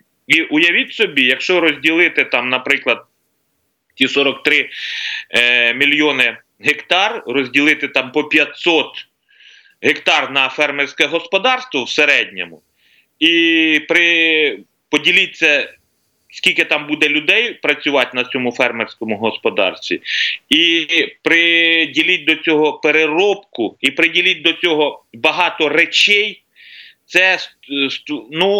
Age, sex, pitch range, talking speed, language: 30-49, male, 145-205 Hz, 100 wpm, Ukrainian